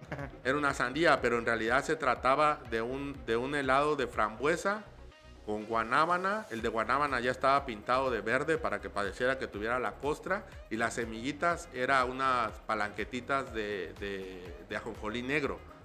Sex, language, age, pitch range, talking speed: male, Spanish, 50-69, 110-145 Hz, 165 wpm